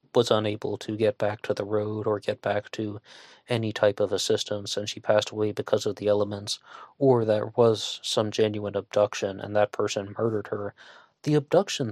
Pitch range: 105-115 Hz